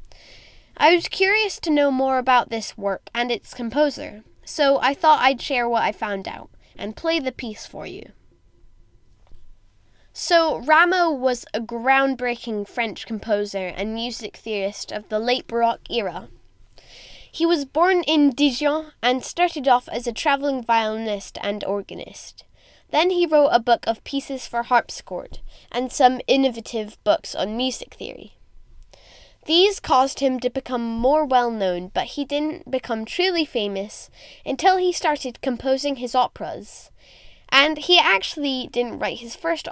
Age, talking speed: 10-29, 150 wpm